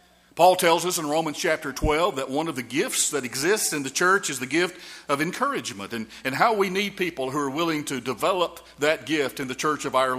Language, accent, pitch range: English, American, 140-190 Hz